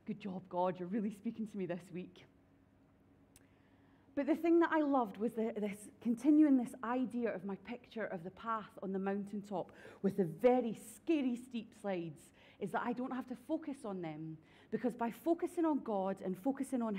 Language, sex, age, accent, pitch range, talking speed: English, female, 30-49, British, 190-240 Hz, 190 wpm